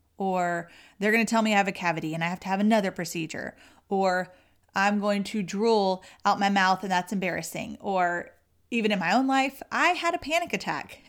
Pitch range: 180-235 Hz